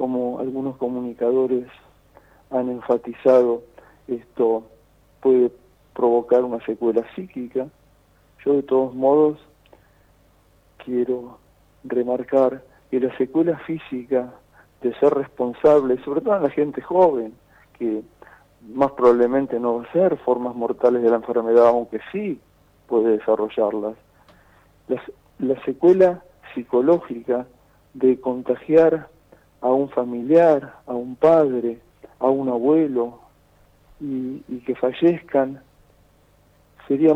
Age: 40-59